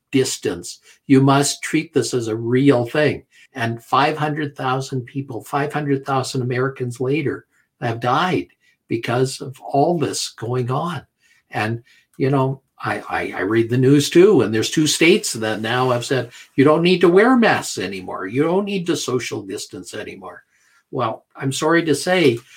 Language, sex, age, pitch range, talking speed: English, male, 50-69, 125-150 Hz, 160 wpm